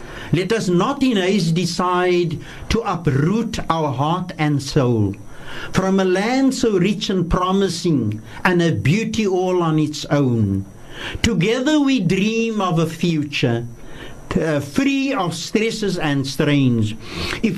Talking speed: 135 wpm